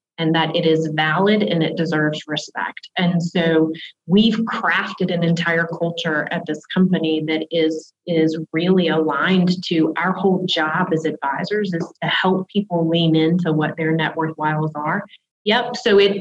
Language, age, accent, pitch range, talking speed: English, 30-49, American, 165-190 Hz, 165 wpm